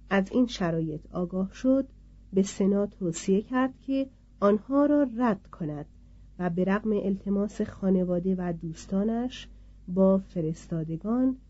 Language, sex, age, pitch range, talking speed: Persian, female, 40-59, 165-225 Hz, 120 wpm